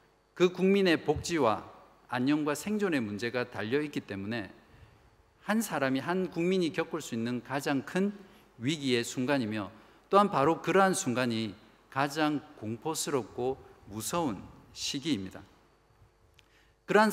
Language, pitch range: Korean, 120-180 Hz